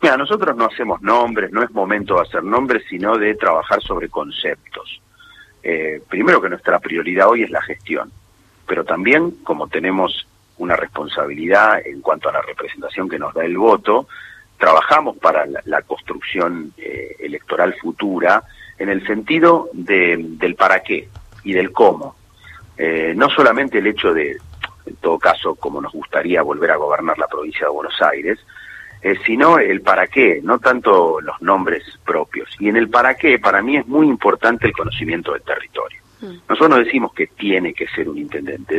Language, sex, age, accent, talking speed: Spanish, male, 40-59, Argentinian, 170 wpm